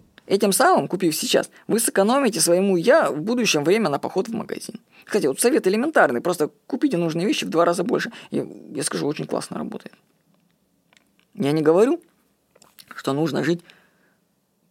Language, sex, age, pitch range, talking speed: Russian, female, 20-39, 170-220 Hz, 160 wpm